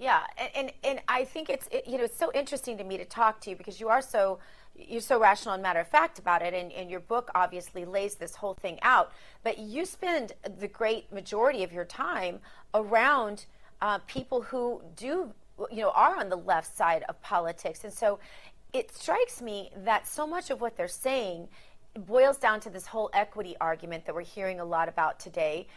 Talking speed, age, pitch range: 210 wpm, 30-49, 180-260 Hz